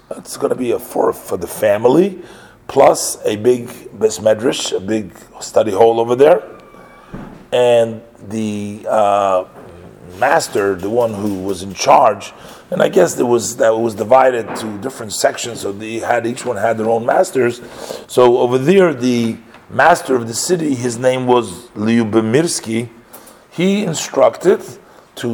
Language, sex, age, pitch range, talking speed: English, male, 40-59, 115-135 Hz, 150 wpm